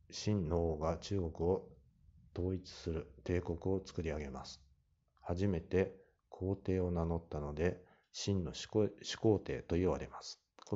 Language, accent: Japanese, native